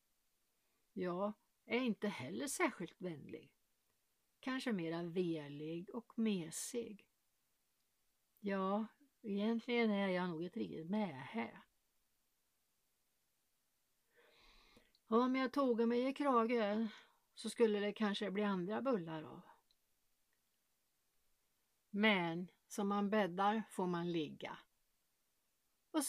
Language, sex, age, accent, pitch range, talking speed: Swedish, female, 60-79, native, 185-230 Hz, 95 wpm